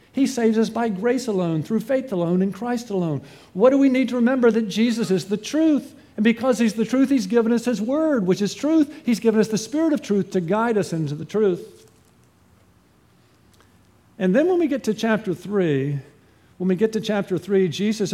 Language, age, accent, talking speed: English, 50-69, American, 210 wpm